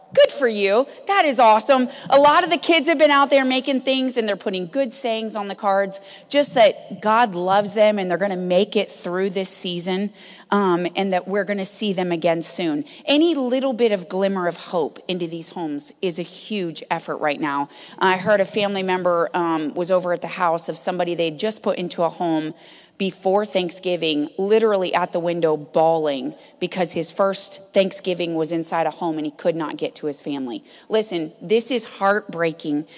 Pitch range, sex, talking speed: 175-245 Hz, female, 200 wpm